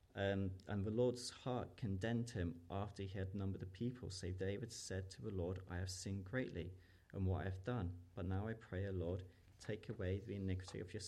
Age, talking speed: 30-49, 215 wpm